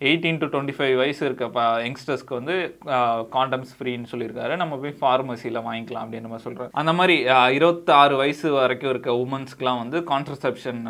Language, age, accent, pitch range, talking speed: Tamil, 20-39, native, 120-145 Hz, 145 wpm